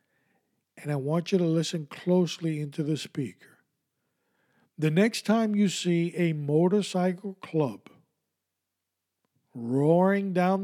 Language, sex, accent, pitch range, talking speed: English, male, American, 150-185 Hz, 115 wpm